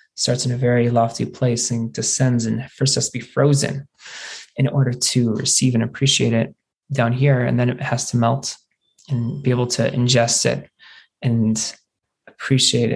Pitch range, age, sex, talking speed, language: 120-135 Hz, 20-39, male, 170 wpm, English